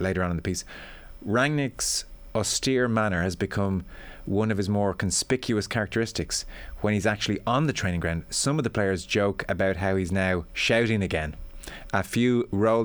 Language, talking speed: English, 175 wpm